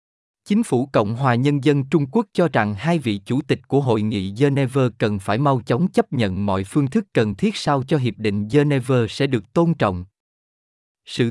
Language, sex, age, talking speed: Vietnamese, male, 20-39, 205 wpm